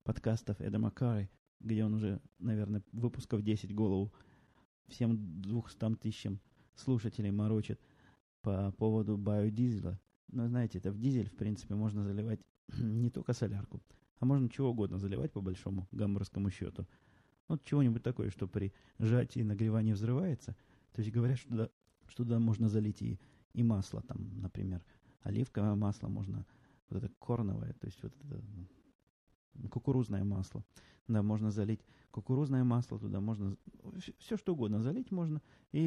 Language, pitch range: Russian, 100-120 Hz